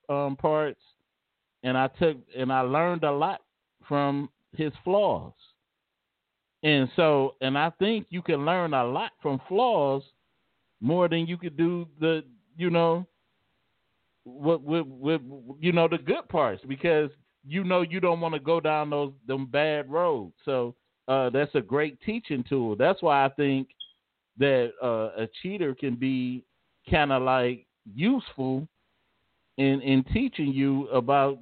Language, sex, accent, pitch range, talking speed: English, male, American, 130-165 Hz, 155 wpm